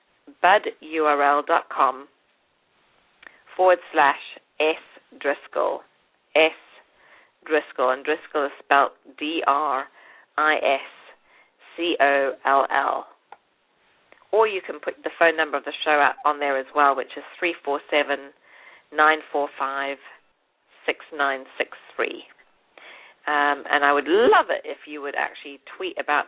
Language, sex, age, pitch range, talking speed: English, female, 40-59, 145-165 Hz, 95 wpm